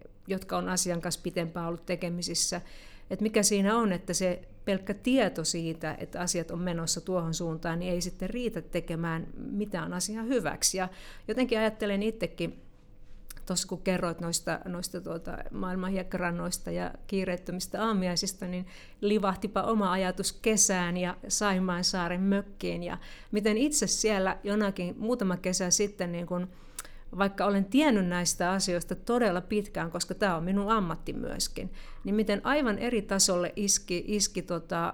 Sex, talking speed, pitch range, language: female, 145 wpm, 175-205 Hz, Finnish